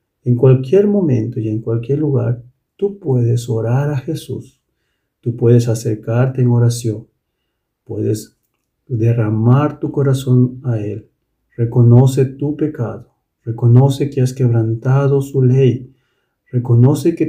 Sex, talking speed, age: male, 120 wpm, 40-59